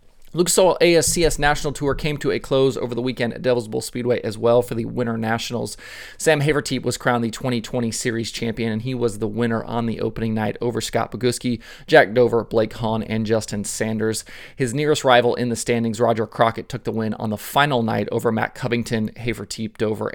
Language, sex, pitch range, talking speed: English, male, 110-130 Hz, 205 wpm